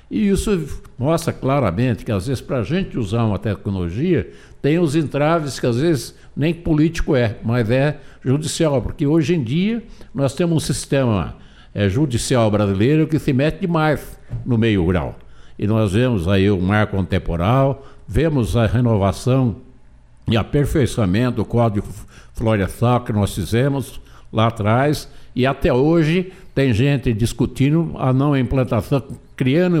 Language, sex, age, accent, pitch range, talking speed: Portuguese, male, 60-79, Brazilian, 110-145 Hz, 145 wpm